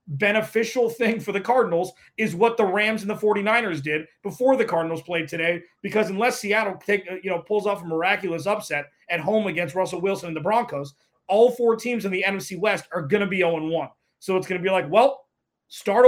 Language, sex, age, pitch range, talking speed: English, male, 30-49, 175-225 Hz, 215 wpm